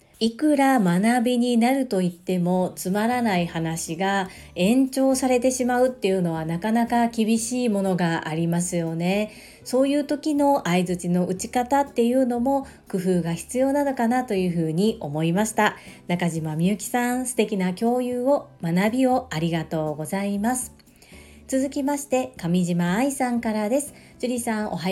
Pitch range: 185-250 Hz